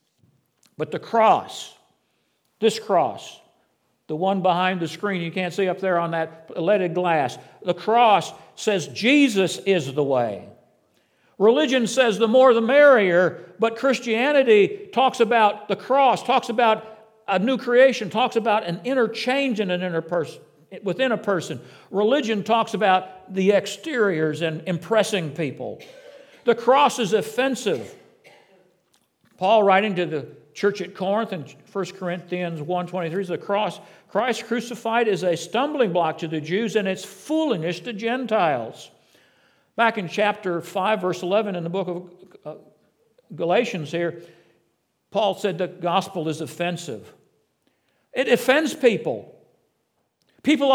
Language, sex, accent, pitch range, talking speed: English, male, American, 175-240 Hz, 140 wpm